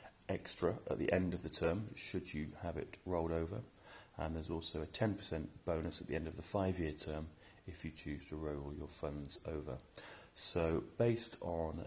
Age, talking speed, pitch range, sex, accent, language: 40-59, 185 wpm, 75-95 Hz, male, British, English